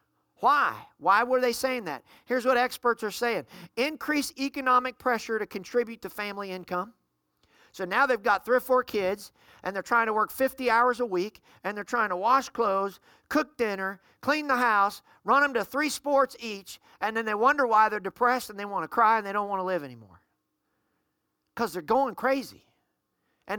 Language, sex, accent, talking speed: English, male, American, 195 wpm